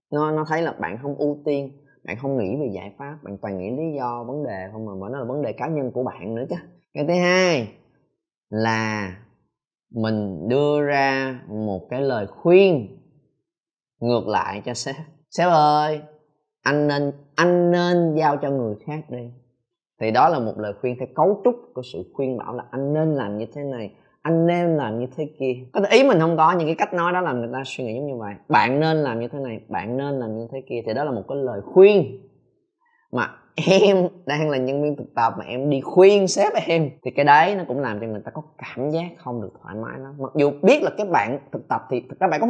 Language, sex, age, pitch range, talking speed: Vietnamese, male, 20-39, 125-175 Hz, 235 wpm